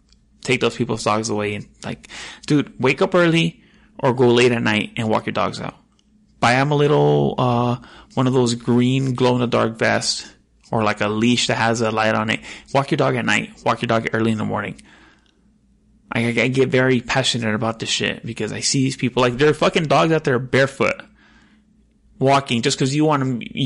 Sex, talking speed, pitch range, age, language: male, 215 wpm, 115-135 Hz, 20-39, English